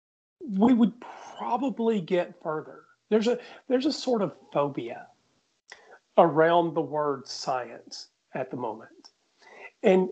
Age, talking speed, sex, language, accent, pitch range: 40-59, 120 wpm, male, English, American, 165-230 Hz